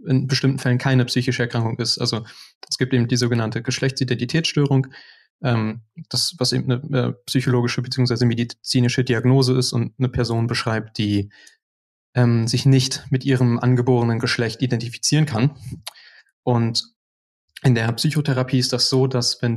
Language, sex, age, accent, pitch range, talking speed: German, male, 20-39, German, 115-130 Hz, 145 wpm